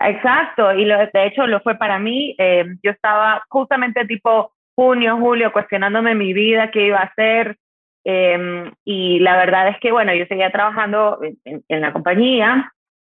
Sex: female